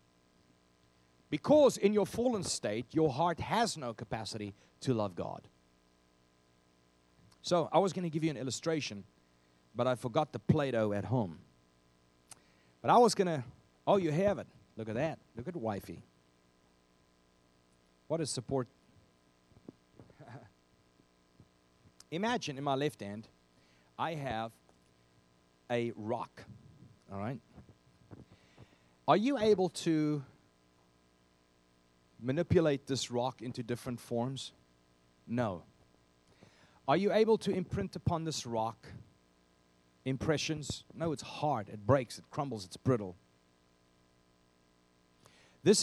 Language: English